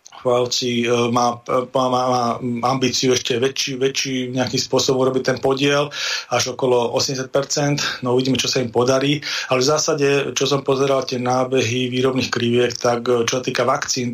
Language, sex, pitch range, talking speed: Slovak, male, 120-135 Hz, 150 wpm